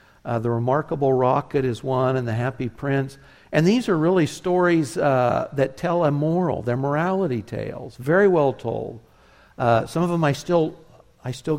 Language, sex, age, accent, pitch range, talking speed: English, male, 60-79, American, 120-150 Hz, 175 wpm